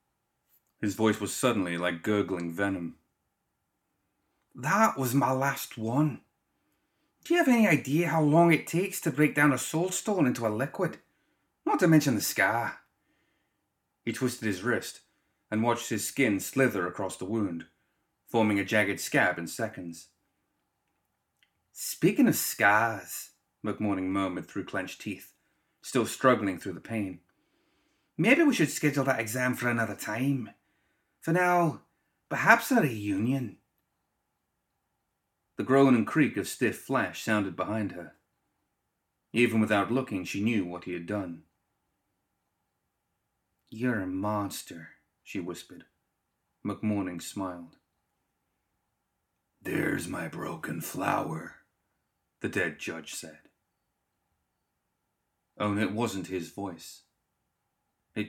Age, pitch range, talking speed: 30-49, 100-135 Hz, 125 wpm